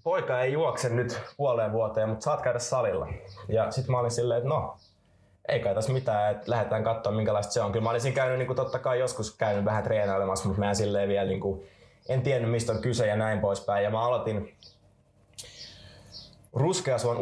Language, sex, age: Finnish, male, 20-39